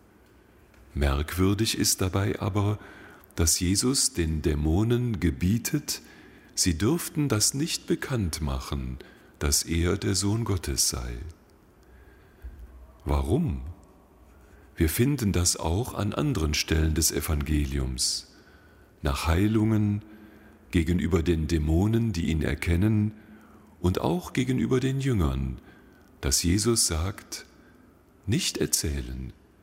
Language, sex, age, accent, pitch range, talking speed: German, male, 40-59, German, 75-105 Hz, 100 wpm